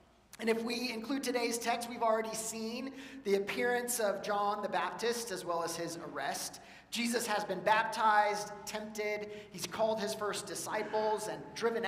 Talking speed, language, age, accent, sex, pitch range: 160 wpm, English, 40-59, American, male, 185-220 Hz